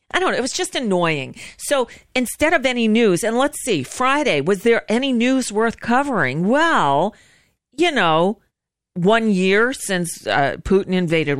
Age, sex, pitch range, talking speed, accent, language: 40-59, female, 185-265 Hz, 165 wpm, American, English